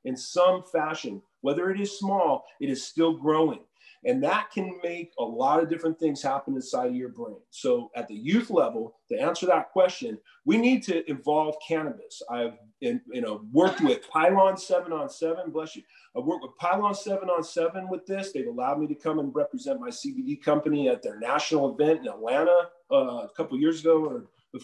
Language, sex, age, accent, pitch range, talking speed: English, male, 40-59, American, 155-230 Hz, 200 wpm